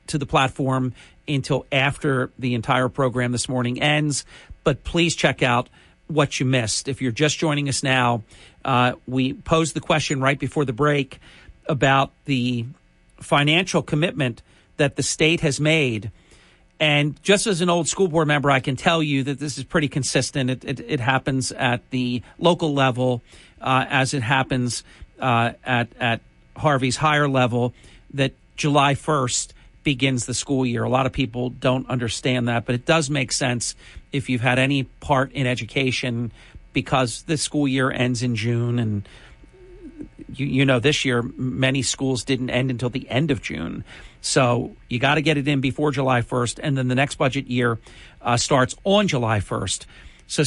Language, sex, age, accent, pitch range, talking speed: English, male, 50-69, American, 125-150 Hz, 175 wpm